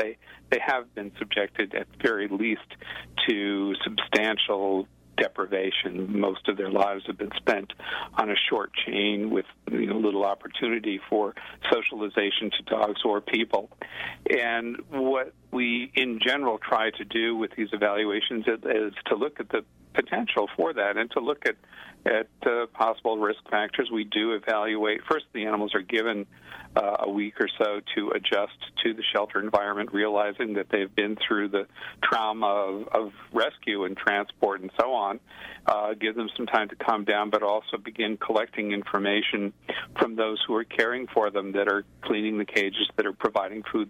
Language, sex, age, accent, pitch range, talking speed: English, male, 50-69, American, 100-110 Hz, 165 wpm